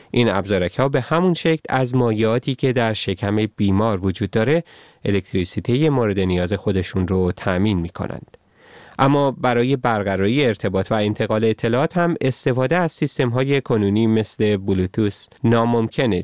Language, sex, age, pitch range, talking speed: Persian, male, 30-49, 100-140 Hz, 135 wpm